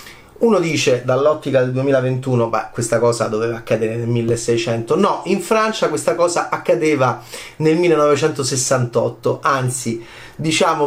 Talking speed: 120 wpm